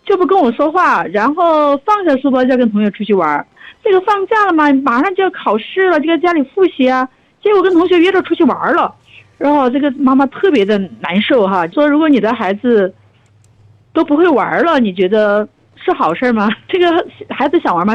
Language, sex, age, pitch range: Chinese, female, 50-69, 220-310 Hz